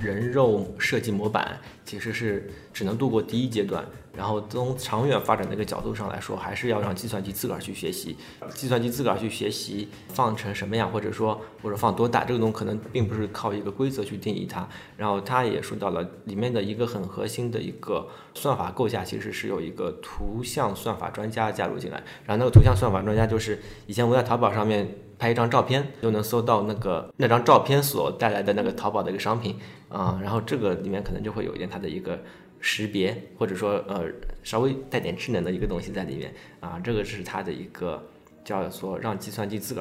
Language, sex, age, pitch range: Chinese, male, 20-39, 100-120 Hz